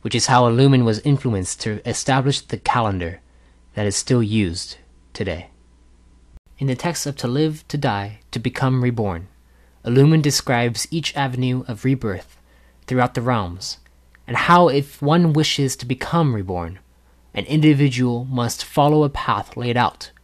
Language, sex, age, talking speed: English, male, 20-39, 150 wpm